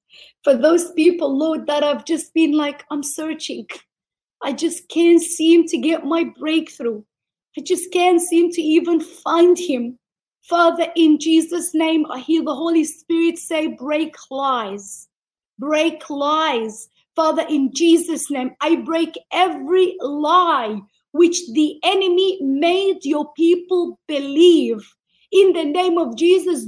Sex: female